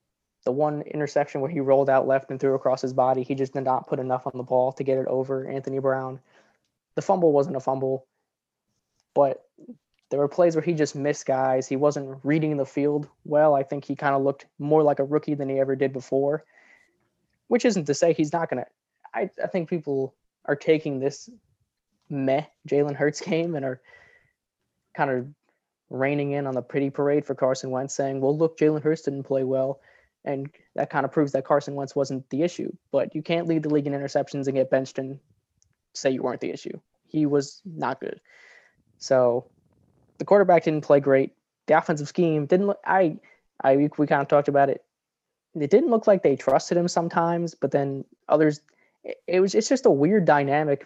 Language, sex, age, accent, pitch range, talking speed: English, male, 20-39, American, 135-155 Hz, 205 wpm